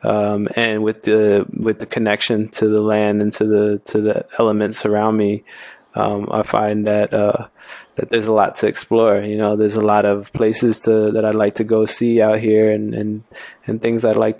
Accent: American